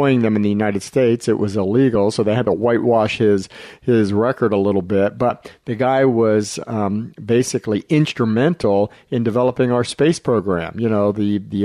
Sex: male